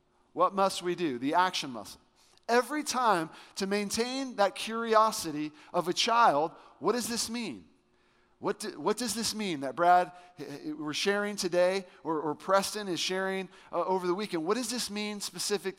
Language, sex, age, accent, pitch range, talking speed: English, male, 40-59, American, 175-210 Hz, 165 wpm